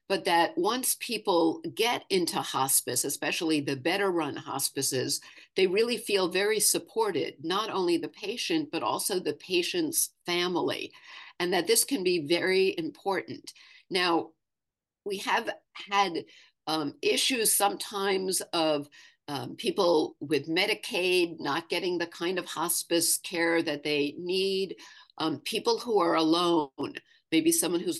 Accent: American